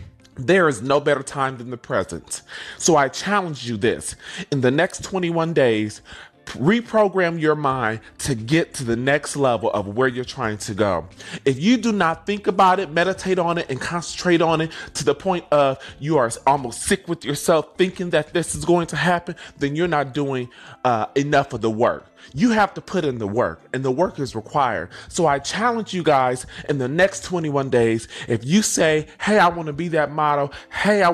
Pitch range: 130-185 Hz